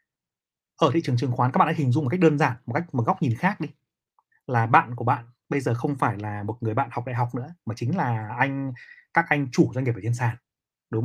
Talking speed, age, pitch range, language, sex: 270 wpm, 30-49, 120-155 Hz, Vietnamese, male